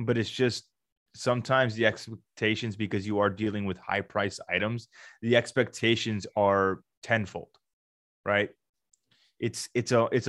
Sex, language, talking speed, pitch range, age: male, English, 135 wpm, 100-115 Hz, 20-39